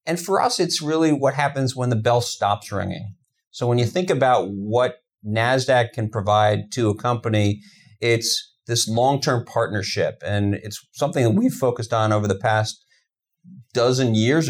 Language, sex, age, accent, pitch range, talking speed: Swedish, male, 40-59, American, 110-135 Hz, 165 wpm